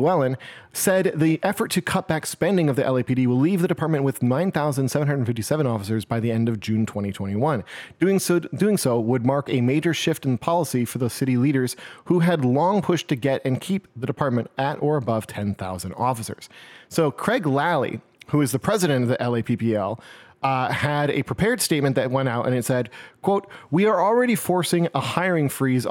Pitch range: 125-165 Hz